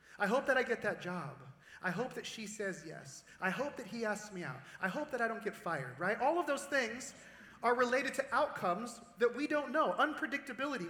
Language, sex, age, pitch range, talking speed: English, male, 30-49, 210-270 Hz, 225 wpm